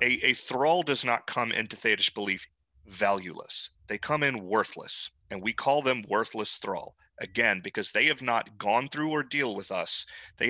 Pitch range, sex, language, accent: 100-120 Hz, male, English, American